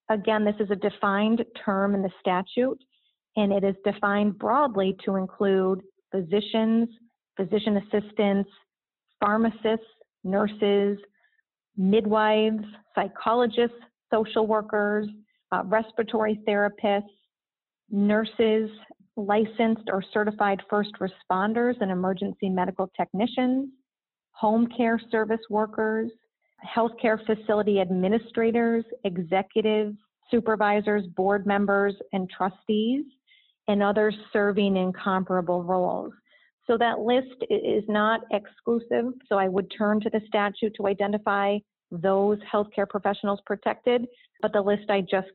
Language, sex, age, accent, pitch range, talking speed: English, female, 40-59, American, 200-225 Hz, 105 wpm